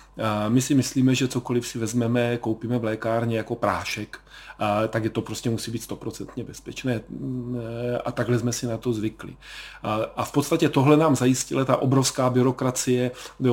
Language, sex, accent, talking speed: Czech, male, native, 165 wpm